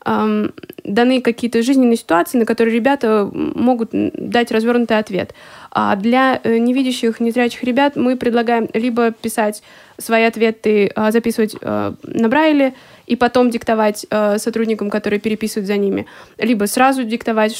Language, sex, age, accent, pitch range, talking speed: Russian, female, 20-39, native, 210-240 Hz, 125 wpm